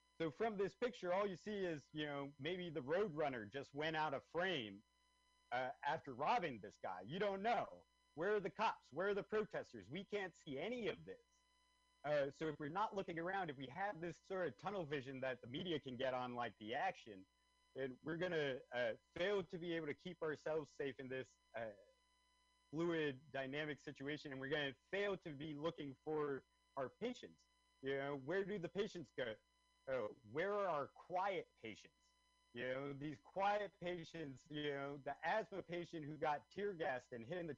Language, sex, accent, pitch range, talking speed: English, male, American, 140-195 Hz, 195 wpm